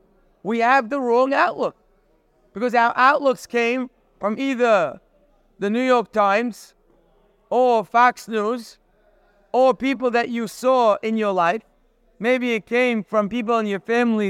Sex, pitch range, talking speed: male, 210-275 Hz, 145 wpm